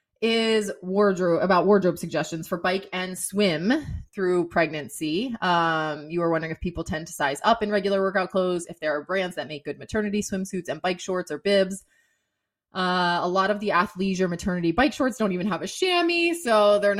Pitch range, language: 165-210 Hz, English